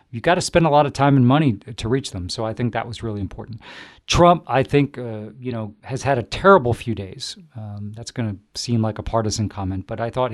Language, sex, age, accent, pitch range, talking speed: English, male, 40-59, American, 105-120 Hz, 255 wpm